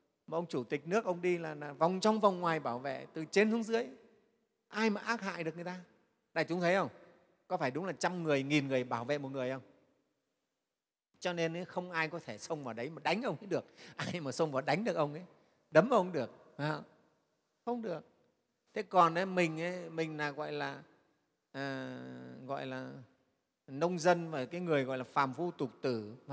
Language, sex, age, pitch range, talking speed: Vietnamese, male, 30-49, 145-180 Hz, 210 wpm